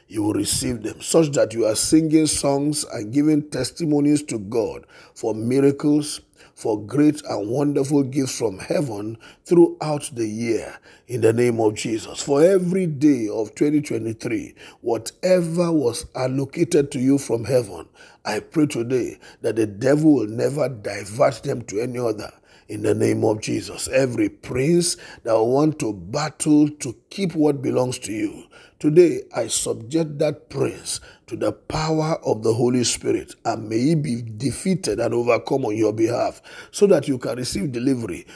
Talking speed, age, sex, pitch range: 160 wpm, 50-69, male, 125-165 Hz